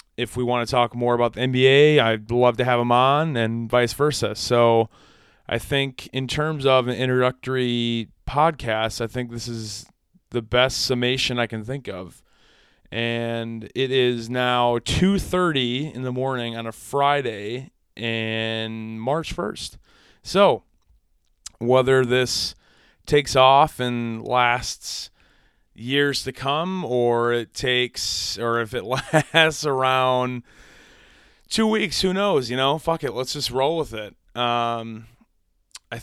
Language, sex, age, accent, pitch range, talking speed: English, male, 30-49, American, 115-135 Hz, 140 wpm